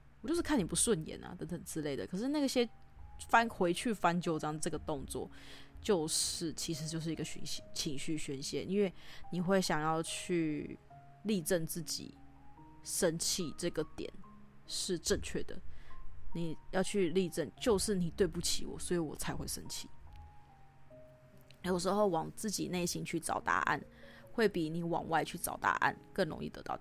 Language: Chinese